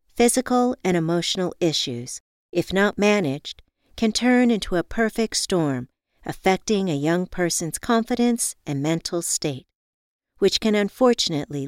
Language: English